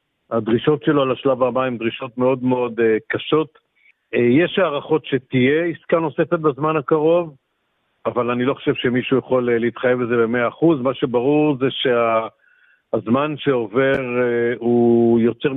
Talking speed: 125 wpm